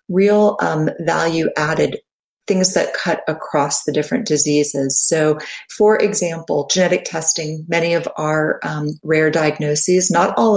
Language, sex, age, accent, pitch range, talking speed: English, female, 40-59, American, 150-185 Hz, 135 wpm